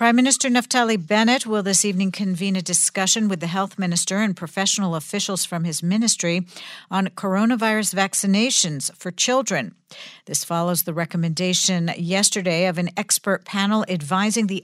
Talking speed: 150 wpm